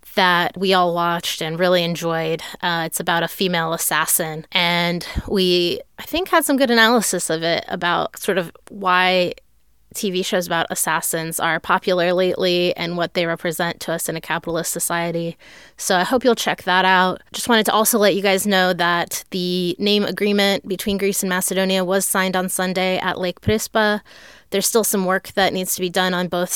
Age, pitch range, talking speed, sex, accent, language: 20-39, 170-200 Hz, 190 wpm, female, American, English